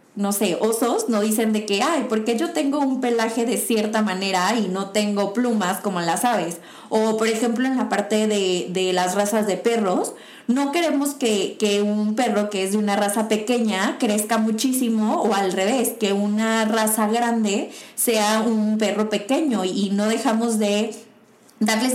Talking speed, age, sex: 180 wpm, 20-39, female